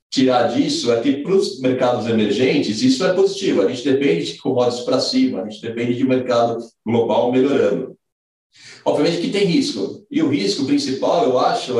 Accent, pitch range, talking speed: Brazilian, 120-170 Hz, 185 wpm